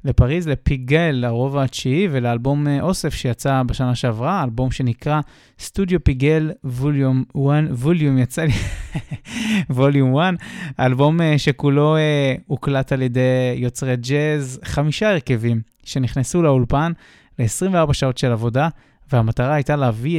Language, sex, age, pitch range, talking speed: Hebrew, male, 20-39, 125-155 Hz, 115 wpm